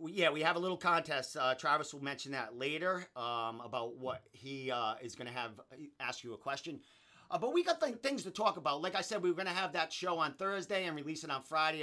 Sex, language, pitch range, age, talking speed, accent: male, English, 140-180 Hz, 40-59, 260 wpm, American